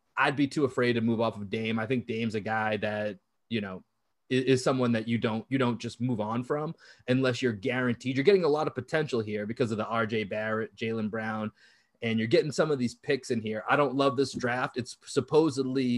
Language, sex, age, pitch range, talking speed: English, male, 20-39, 115-140 Hz, 235 wpm